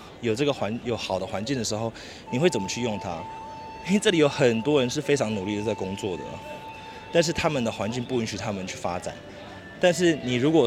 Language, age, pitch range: Chinese, 20-39, 100-145 Hz